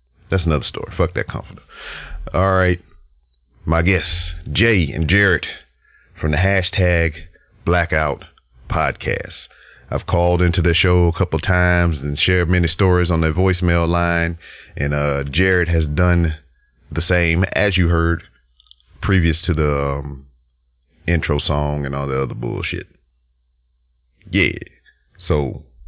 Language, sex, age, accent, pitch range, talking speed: English, male, 40-59, American, 75-95 Hz, 135 wpm